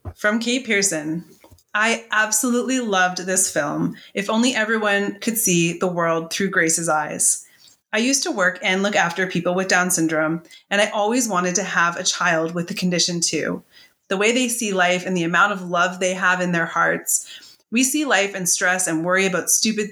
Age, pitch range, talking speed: 30-49, 175-205 Hz, 195 wpm